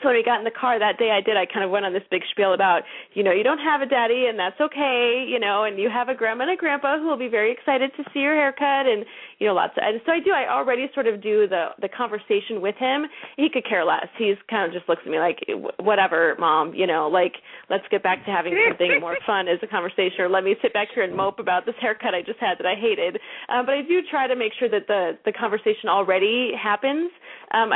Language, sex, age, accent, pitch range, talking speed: English, female, 30-49, American, 190-255 Hz, 280 wpm